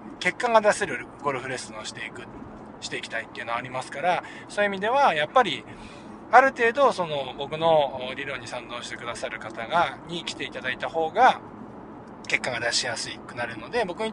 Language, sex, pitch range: Japanese, male, 130-205 Hz